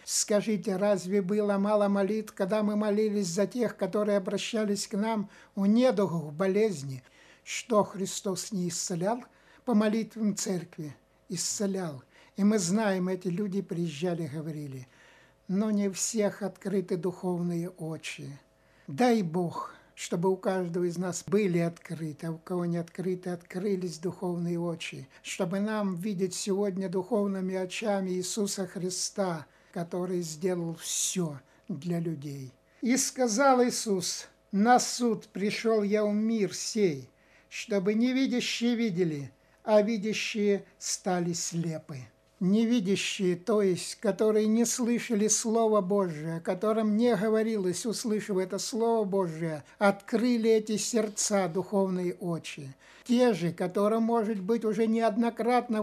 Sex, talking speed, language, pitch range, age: male, 120 wpm, Russian, 175-215 Hz, 60-79